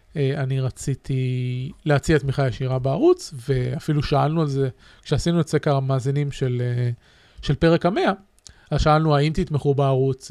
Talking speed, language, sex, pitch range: 135 wpm, Hebrew, male, 135-165 Hz